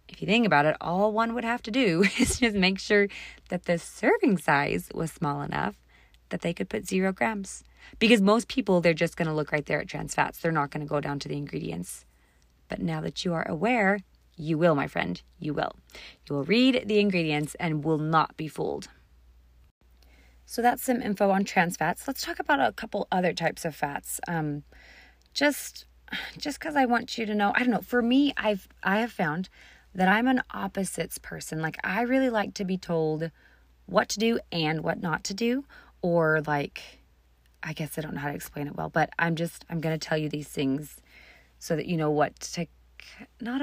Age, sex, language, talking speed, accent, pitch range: 30-49, female, English, 215 wpm, American, 150-210 Hz